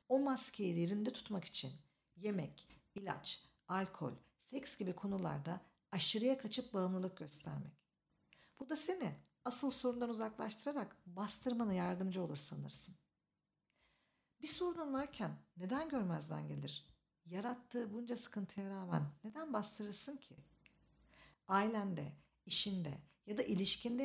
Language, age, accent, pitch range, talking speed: Turkish, 50-69, native, 175-240 Hz, 105 wpm